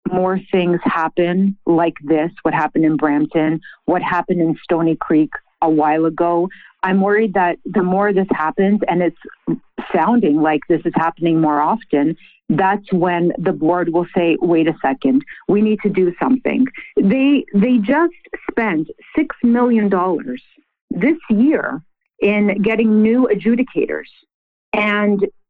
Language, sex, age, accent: English, female, 50-69, American